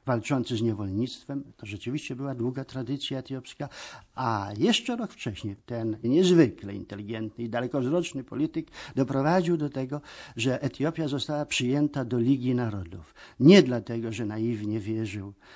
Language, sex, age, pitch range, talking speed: Polish, male, 50-69, 110-140 Hz, 130 wpm